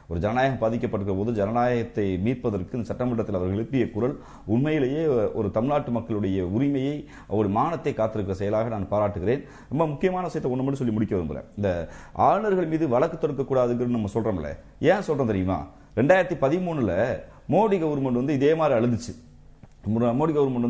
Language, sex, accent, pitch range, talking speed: Tamil, male, native, 115-160 Hz, 140 wpm